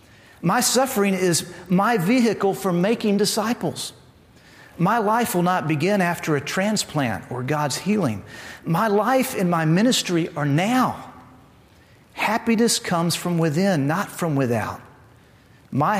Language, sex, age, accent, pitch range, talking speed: English, male, 40-59, American, 135-210 Hz, 130 wpm